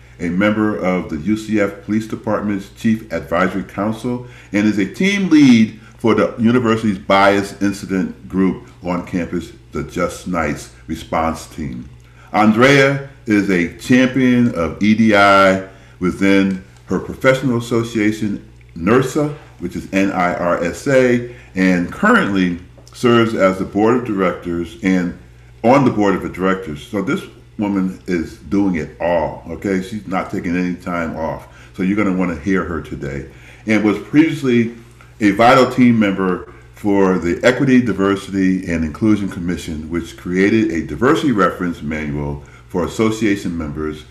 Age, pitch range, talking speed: 40-59, 85-115 Hz, 140 wpm